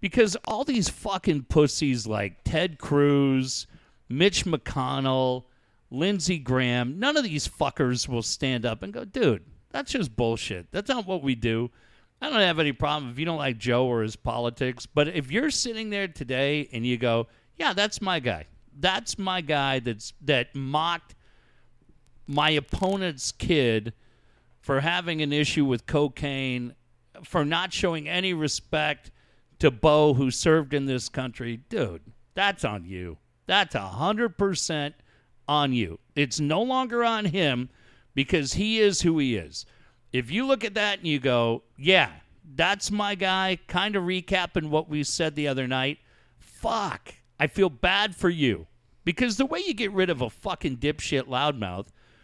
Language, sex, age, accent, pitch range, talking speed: English, male, 50-69, American, 120-185 Hz, 160 wpm